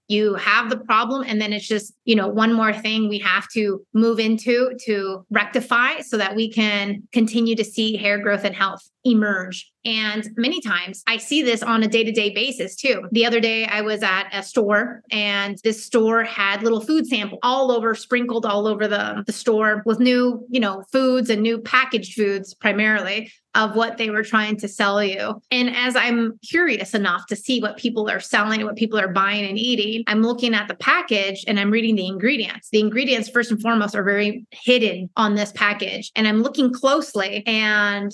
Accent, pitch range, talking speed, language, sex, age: American, 210-240 Hz, 200 wpm, English, female, 30-49